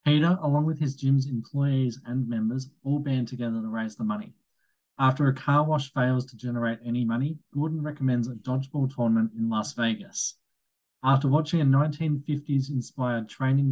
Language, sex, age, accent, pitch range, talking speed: English, male, 20-39, Australian, 120-145 Hz, 160 wpm